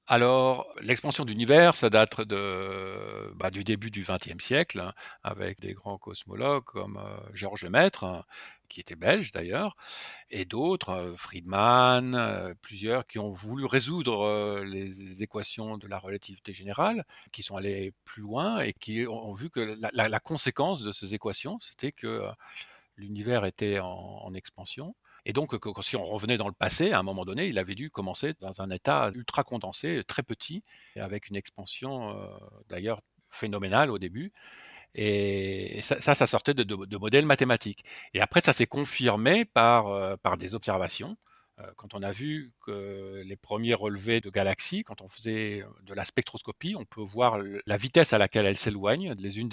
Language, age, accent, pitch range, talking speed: French, 50-69, French, 100-125 Hz, 175 wpm